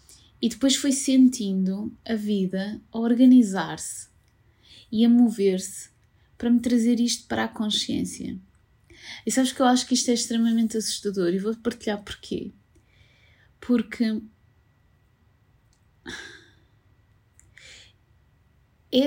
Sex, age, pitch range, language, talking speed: female, 20-39, 185-230 Hz, Portuguese, 105 wpm